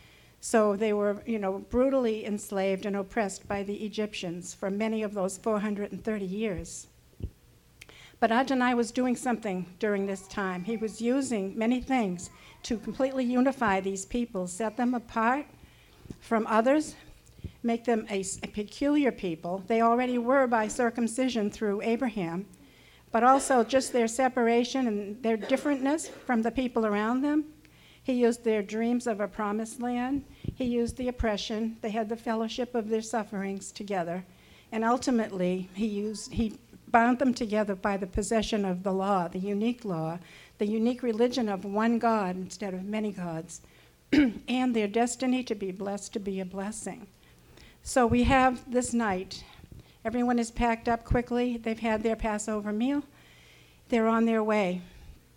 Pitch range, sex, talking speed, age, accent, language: 200-245 Hz, female, 155 wpm, 60-79, American, English